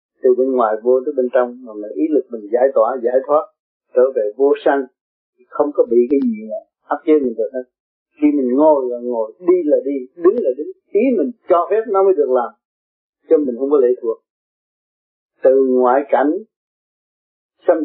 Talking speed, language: 200 wpm, Vietnamese